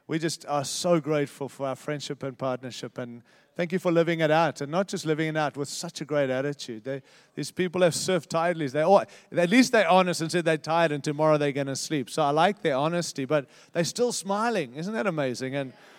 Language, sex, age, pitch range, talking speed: English, male, 30-49, 145-175 Hz, 235 wpm